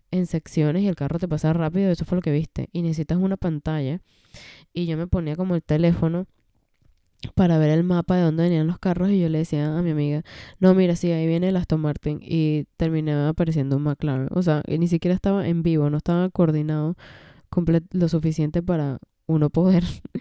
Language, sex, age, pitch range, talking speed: English, female, 10-29, 155-180 Hz, 205 wpm